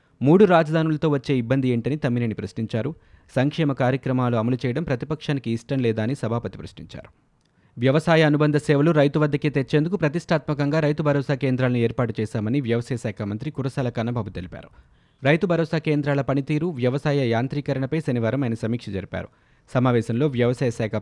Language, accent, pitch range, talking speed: Telugu, native, 115-145 Hz, 135 wpm